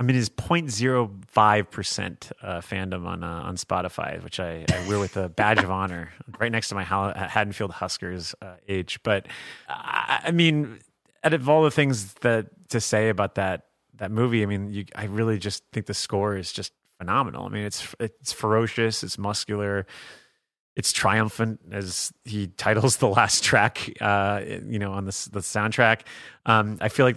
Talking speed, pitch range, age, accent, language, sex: 180 wpm, 95-115 Hz, 30-49, American, English, male